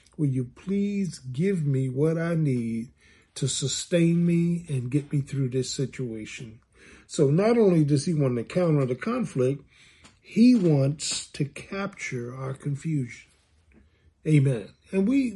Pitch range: 135-190 Hz